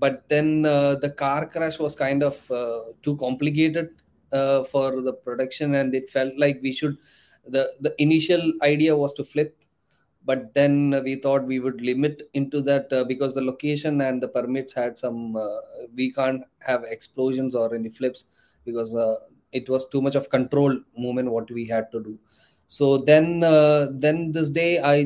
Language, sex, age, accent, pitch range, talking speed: English, male, 20-39, Indian, 130-145 Hz, 180 wpm